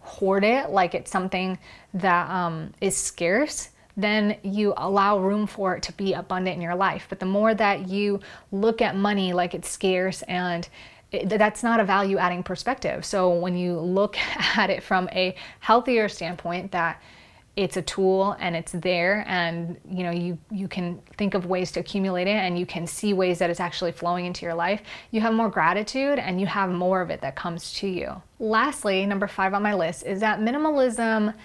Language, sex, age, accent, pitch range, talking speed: English, female, 20-39, American, 175-205 Hz, 195 wpm